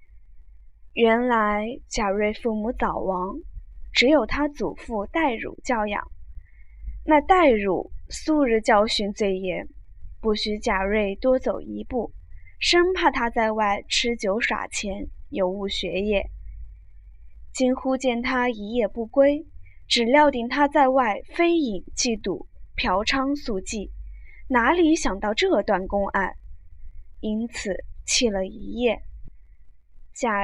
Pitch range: 190-270 Hz